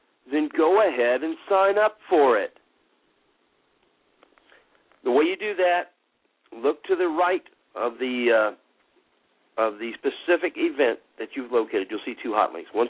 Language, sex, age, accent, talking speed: English, male, 50-69, American, 155 wpm